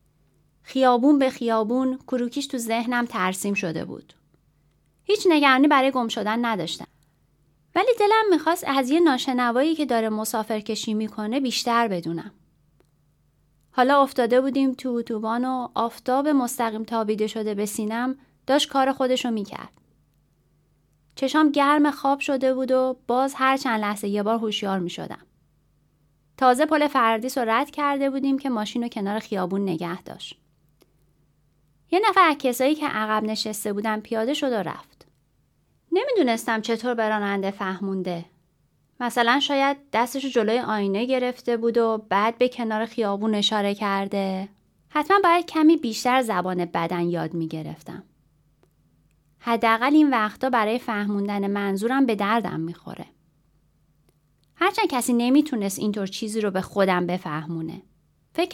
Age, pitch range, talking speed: 30-49, 200-265 Hz, 130 wpm